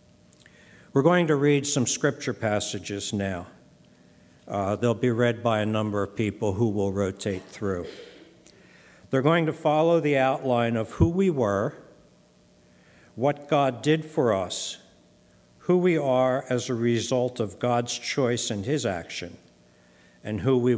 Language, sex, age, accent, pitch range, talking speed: English, male, 60-79, American, 100-135 Hz, 145 wpm